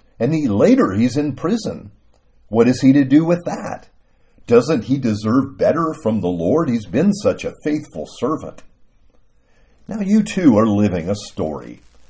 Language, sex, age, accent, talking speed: English, male, 50-69, American, 165 wpm